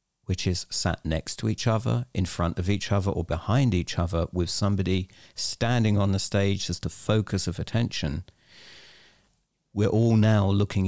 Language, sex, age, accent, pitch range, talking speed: English, male, 50-69, British, 95-110 Hz, 170 wpm